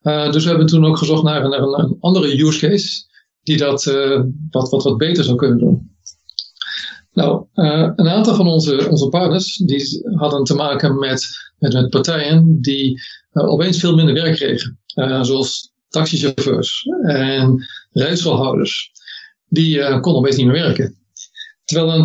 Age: 50-69